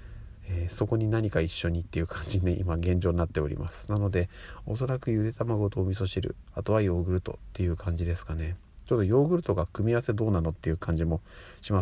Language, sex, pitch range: Japanese, male, 85-110 Hz